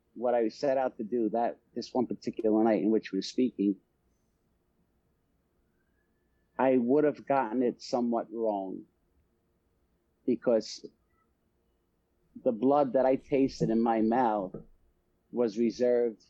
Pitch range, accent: 100-125 Hz, American